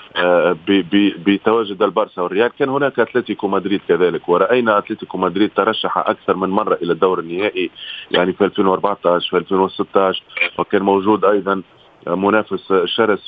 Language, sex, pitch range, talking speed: Arabic, male, 100-125 Hz, 130 wpm